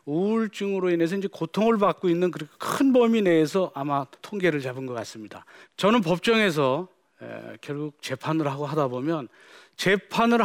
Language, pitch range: Korean, 150-215 Hz